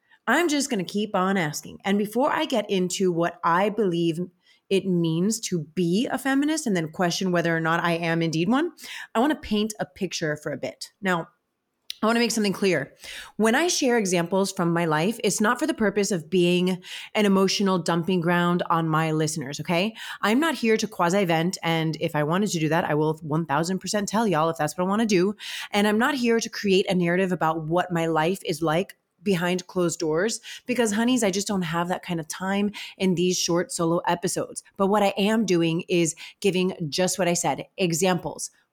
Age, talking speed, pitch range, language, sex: 30-49, 210 wpm, 170-220 Hz, English, female